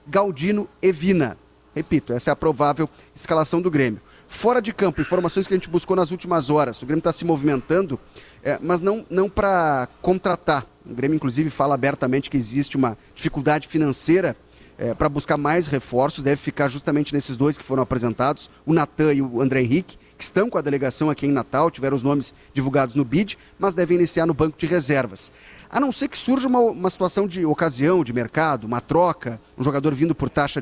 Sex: male